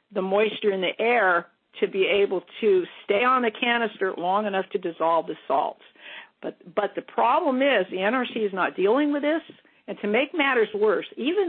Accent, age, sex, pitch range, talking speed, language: American, 50-69, female, 195-285 Hz, 195 wpm, English